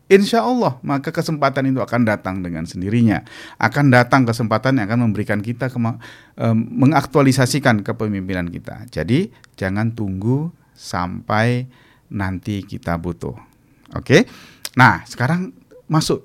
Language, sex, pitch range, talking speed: Indonesian, male, 95-135 Hz, 120 wpm